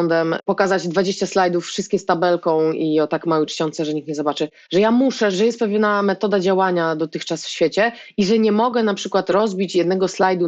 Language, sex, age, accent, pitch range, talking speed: Polish, female, 20-39, native, 185-230 Hz, 200 wpm